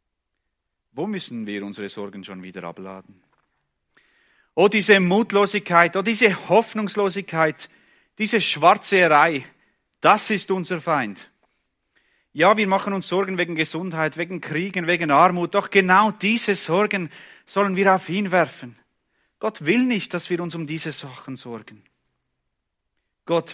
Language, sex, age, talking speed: English, male, 40-59, 130 wpm